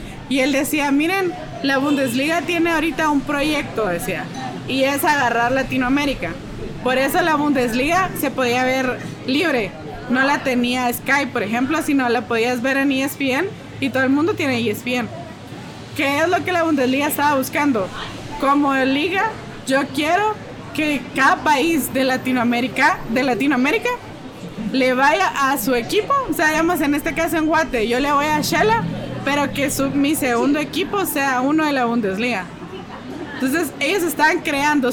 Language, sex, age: Spanish, female, 20-39